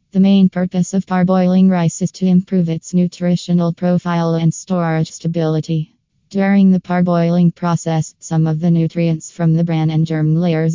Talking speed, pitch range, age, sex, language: 160 wpm, 165-180 Hz, 20-39, female, English